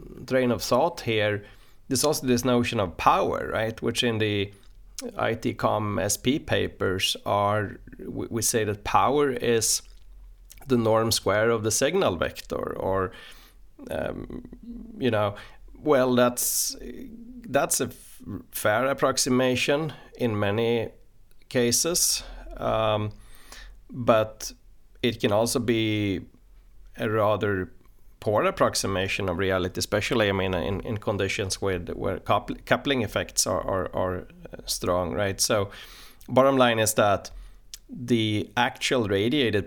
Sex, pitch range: male, 95-120 Hz